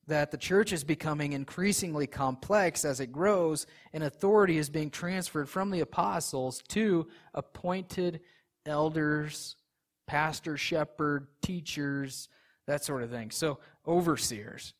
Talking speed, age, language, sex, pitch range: 120 wpm, 30-49, English, male, 145-175 Hz